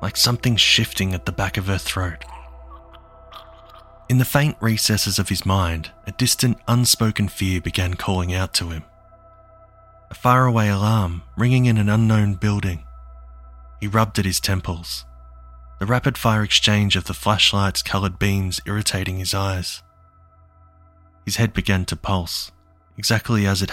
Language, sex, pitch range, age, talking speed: English, male, 95-115 Hz, 20-39, 145 wpm